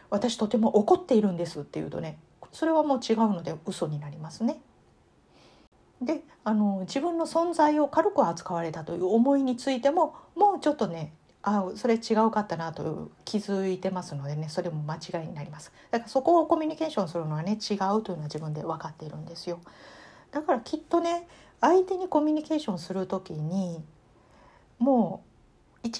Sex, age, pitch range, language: female, 40-59, 165-275 Hz, Japanese